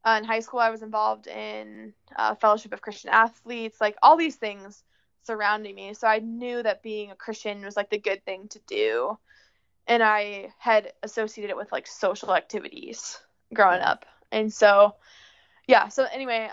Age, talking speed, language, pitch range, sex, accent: 20-39, 180 wpm, English, 205-230 Hz, female, American